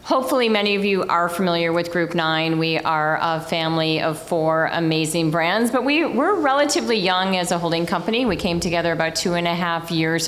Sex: female